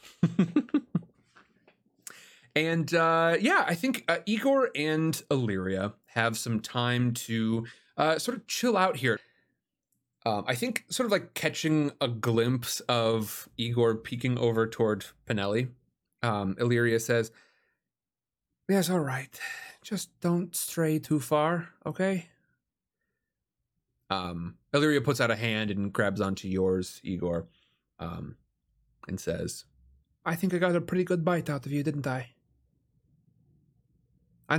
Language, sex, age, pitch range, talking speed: English, male, 30-49, 125-165 Hz, 130 wpm